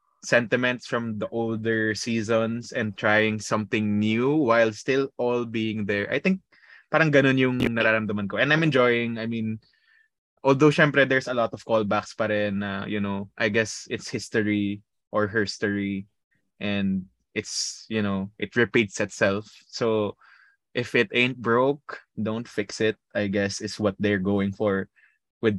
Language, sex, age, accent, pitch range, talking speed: English, male, 20-39, Filipino, 105-120 Hz, 150 wpm